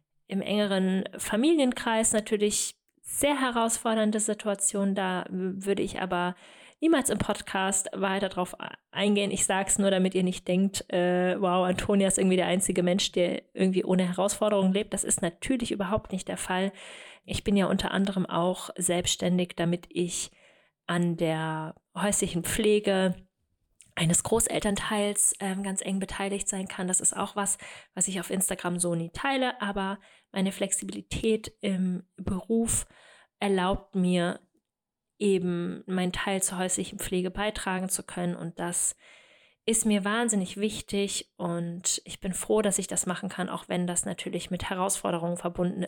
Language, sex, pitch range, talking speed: German, female, 180-205 Hz, 150 wpm